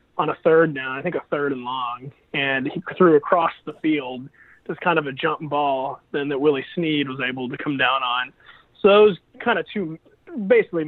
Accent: American